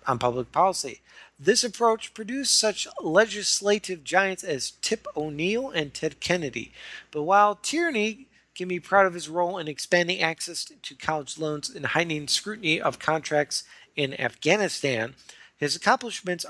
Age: 40-59